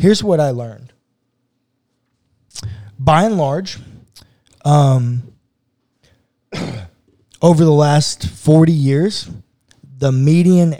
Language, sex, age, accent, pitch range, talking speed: English, male, 20-39, American, 125-155 Hz, 85 wpm